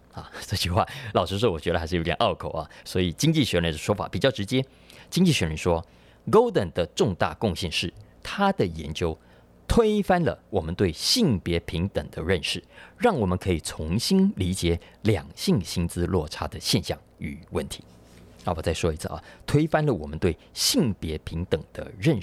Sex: male